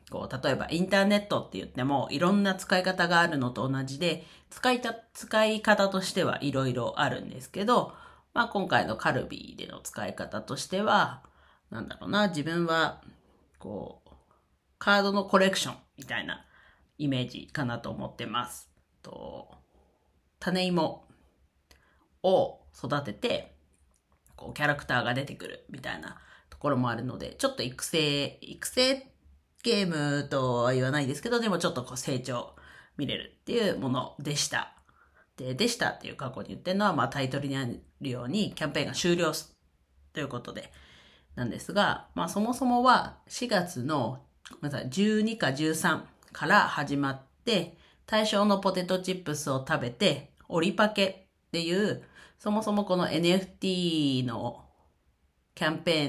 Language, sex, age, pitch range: Japanese, female, 40-59, 125-195 Hz